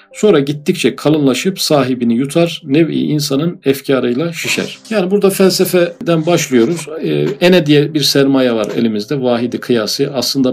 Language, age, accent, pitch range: Turkish, 50-69, native, 125-165 Hz